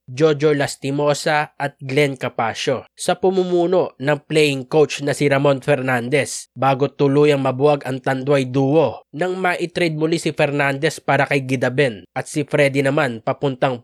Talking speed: 145 wpm